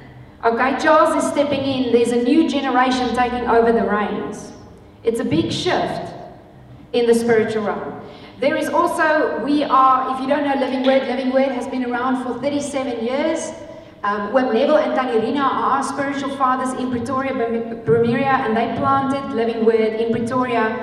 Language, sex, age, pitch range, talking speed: English, female, 40-59, 225-265 Hz, 170 wpm